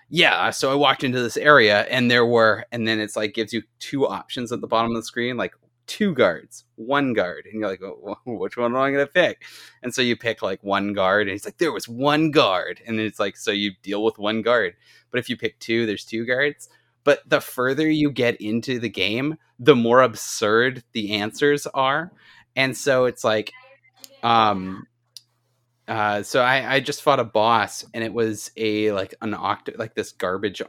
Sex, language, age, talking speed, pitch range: male, English, 20-39, 215 wpm, 115-150 Hz